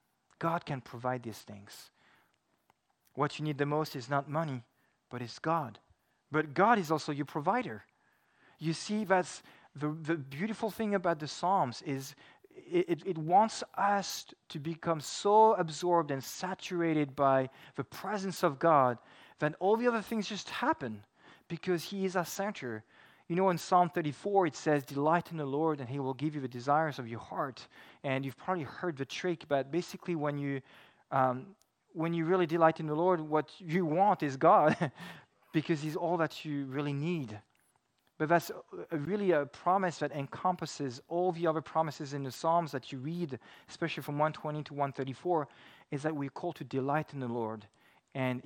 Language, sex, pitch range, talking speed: English, male, 135-175 Hz, 175 wpm